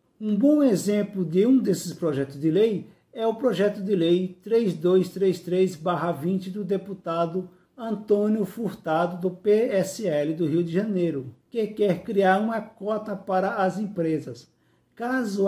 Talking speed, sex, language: 130 wpm, male, Portuguese